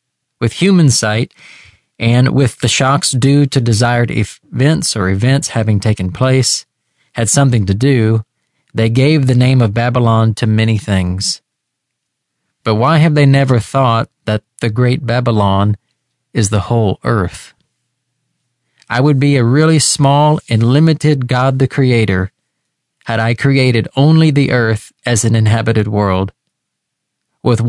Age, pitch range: 40-59, 115-135 Hz